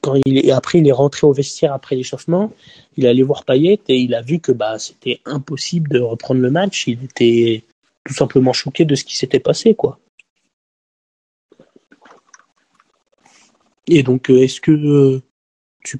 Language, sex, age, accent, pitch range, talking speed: French, male, 20-39, French, 130-145 Hz, 165 wpm